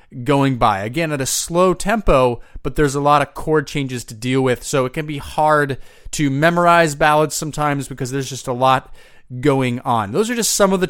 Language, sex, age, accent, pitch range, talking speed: English, male, 30-49, American, 130-165 Hz, 215 wpm